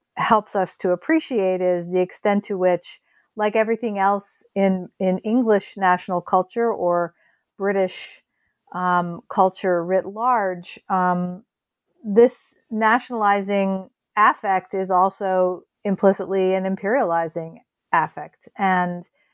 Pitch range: 180-225 Hz